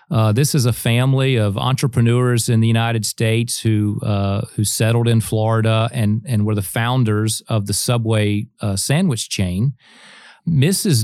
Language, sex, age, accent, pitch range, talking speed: English, male, 40-59, American, 105-125 Hz, 160 wpm